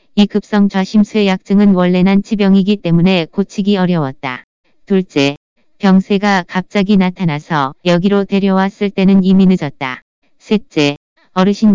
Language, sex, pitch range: Korean, female, 175-205 Hz